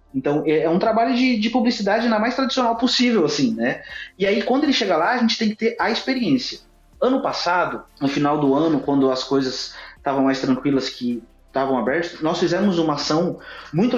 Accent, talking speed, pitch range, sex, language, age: Brazilian, 200 wpm, 145-205 Hz, male, Portuguese, 20-39